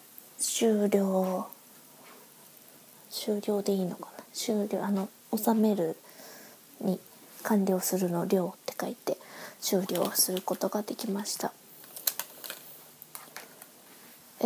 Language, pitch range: Japanese, 195-245 Hz